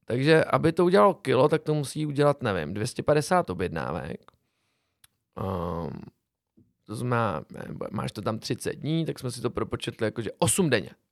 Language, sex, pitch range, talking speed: Czech, male, 120-160 Hz, 160 wpm